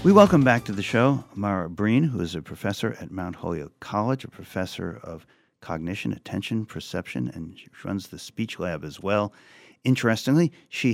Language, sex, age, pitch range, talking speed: English, male, 50-69, 95-130 Hz, 175 wpm